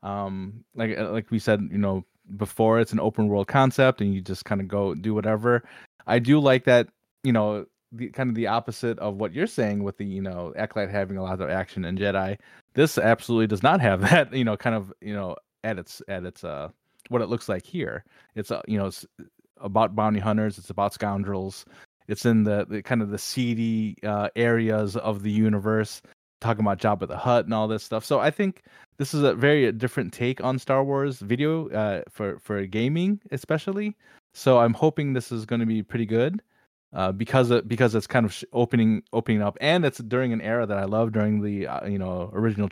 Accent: American